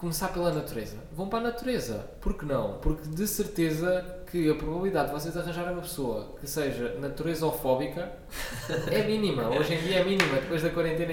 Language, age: Portuguese, 20-39